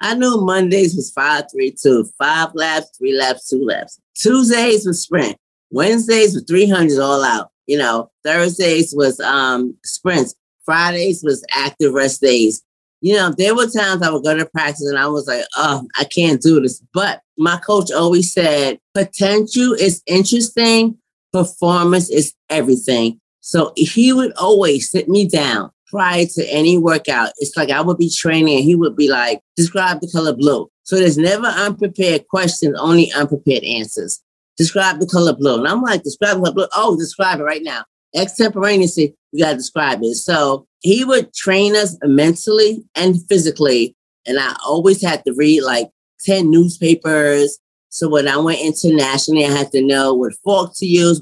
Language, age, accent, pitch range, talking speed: English, 30-49, American, 145-195 Hz, 175 wpm